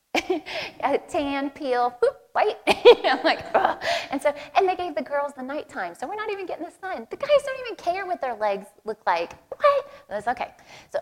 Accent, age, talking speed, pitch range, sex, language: American, 20-39, 220 wpm, 190-265 Hz, female, English